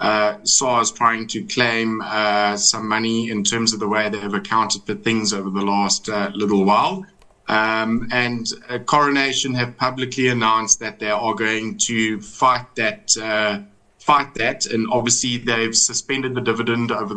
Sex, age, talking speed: male, 30-49, 165 wpm